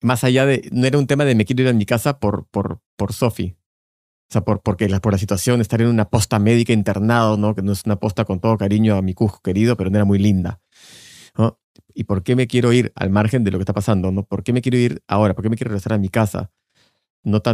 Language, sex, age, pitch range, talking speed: Spanish, male, 30-49, 100-125 Hz, 275 wpm